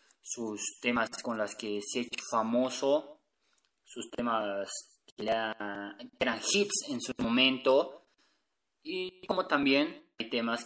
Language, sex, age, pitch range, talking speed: Spanish, male, 20-39, 120-200 Hz, 135 wpm